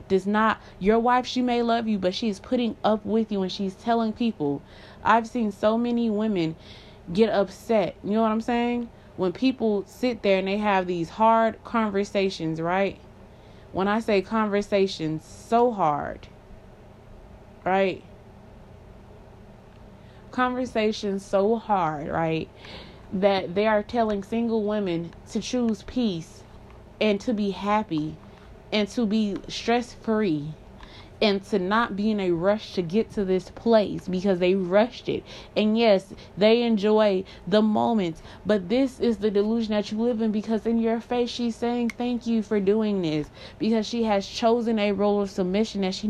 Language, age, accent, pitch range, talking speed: English, 20-39, American, 185-225 Hz, 160 wpm